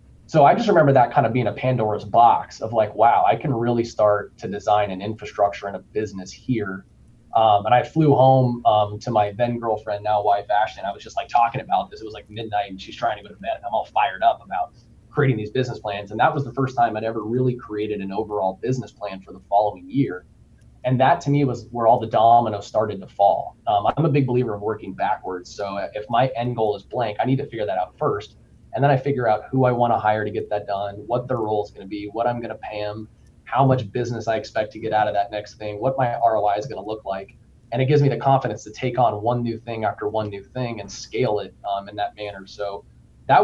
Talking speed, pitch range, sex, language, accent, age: 260 wpm, 105-125 Hz, male, English, American, 20-39